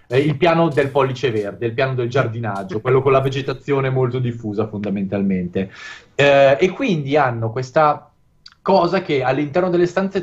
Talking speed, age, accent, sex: 160 wpm, 20-39, native, male